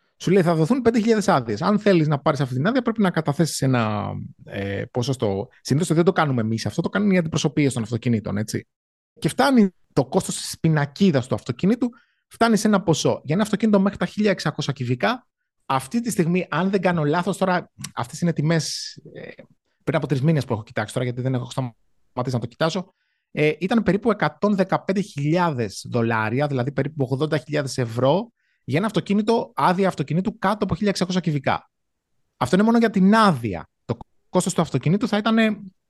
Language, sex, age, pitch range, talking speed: Greek, male, 30-49, 130-195 Hz, 180 wpm